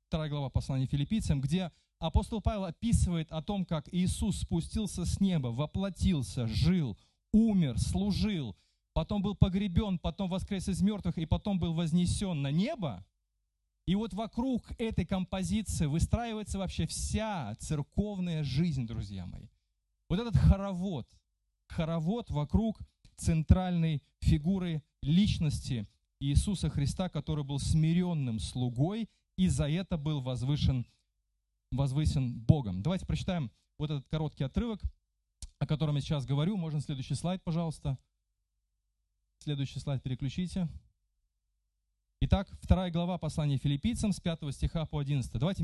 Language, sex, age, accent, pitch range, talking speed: Russian, male, 30-49, native, 125-180 Hz, 120 wpm